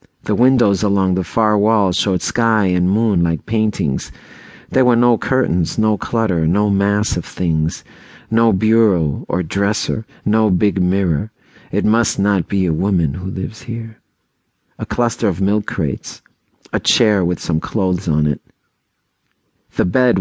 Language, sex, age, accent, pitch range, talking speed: English, male, 50-69, American, 90-110 Hz, 155 wpm